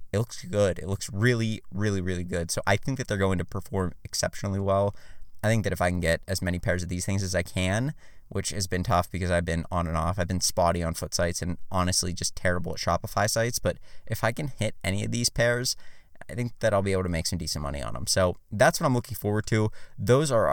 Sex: male